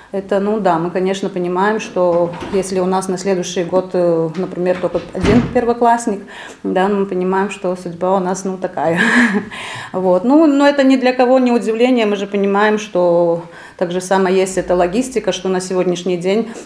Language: Russian